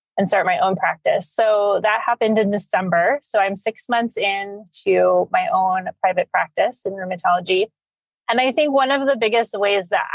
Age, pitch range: 20-39, 190-235 Hz